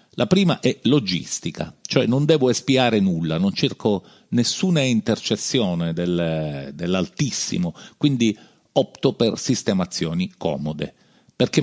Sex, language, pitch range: male, Italian, 90-125 Hz